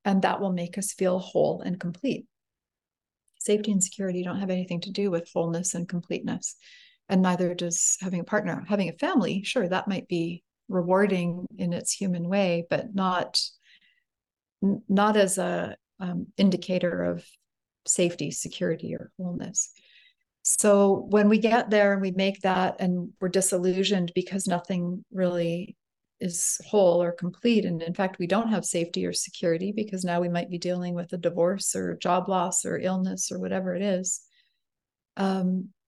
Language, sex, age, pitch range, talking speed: English, female, 40-59, 175-200 Hz, 165 wpm